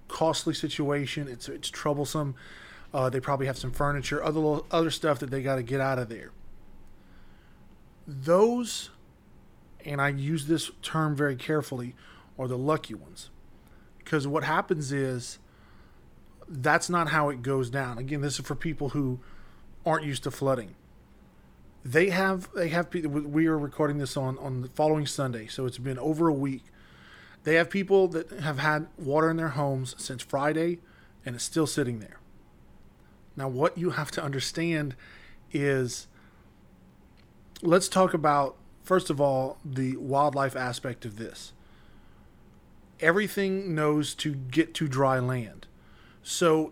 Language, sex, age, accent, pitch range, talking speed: English, male, 20-39, American, 130-160 Hz, 150 wpm